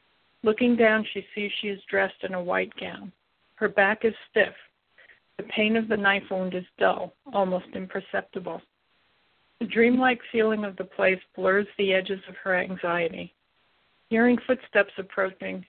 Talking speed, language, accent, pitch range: 155 wpm, English, American, 195-235 Hz